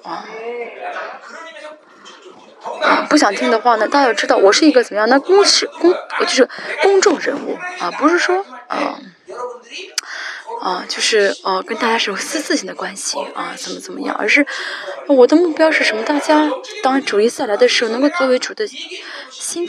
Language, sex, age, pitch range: Chinese, female, 20-39, 230-350 Hz